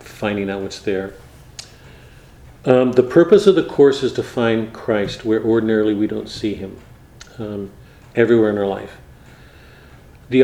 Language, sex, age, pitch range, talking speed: English, male, 50-69, 105-125 Hz, 150 wpm